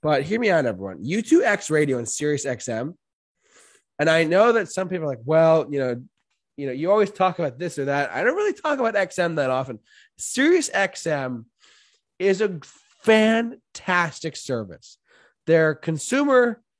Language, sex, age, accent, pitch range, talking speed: English, male, 20-39, American, 140-210 Hz, 165 wpm